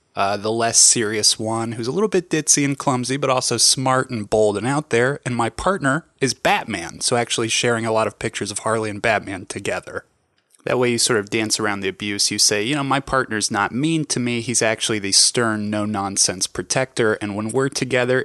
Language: English